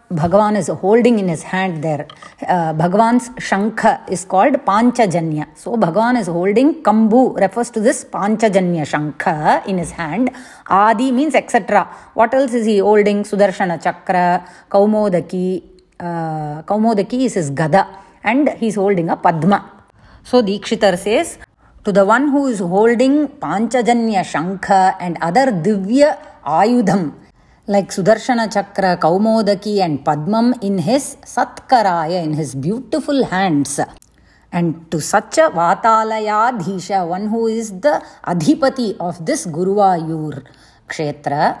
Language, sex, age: English, female, 30-49